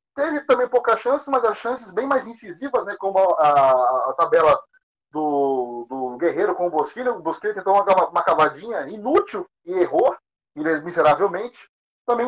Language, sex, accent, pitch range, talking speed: Portuguese, male, Brazilian, 190-265 Hz, 170 wpm